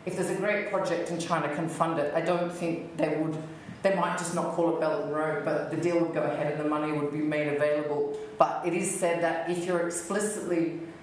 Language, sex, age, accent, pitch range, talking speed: English, female, 30-49, Australian, 155-180 Hz, 245 wpm